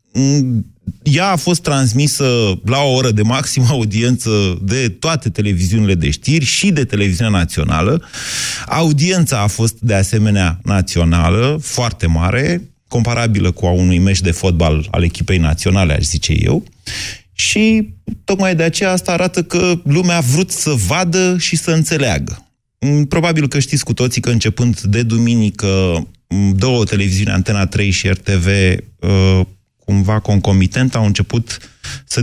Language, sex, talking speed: Romanian, male, 140 wpm